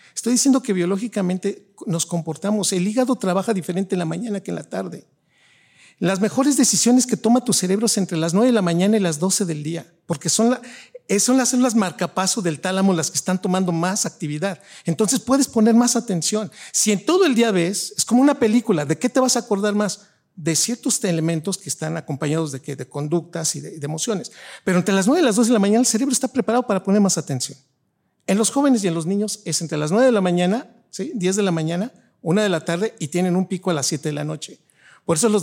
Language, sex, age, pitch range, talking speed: Spanish, male, 50-69, 165-220 Hz, 235 wpm